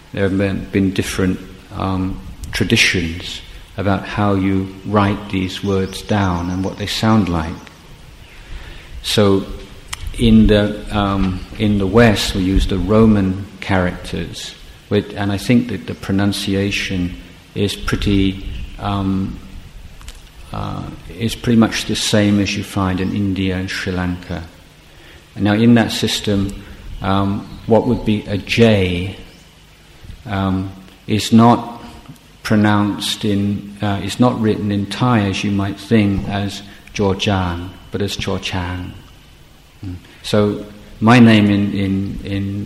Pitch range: 95-105 Hz